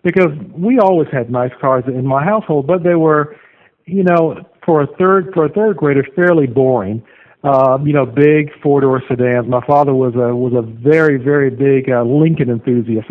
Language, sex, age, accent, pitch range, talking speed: English, male, 50-69, American, 130-155 Hz, 190 wpm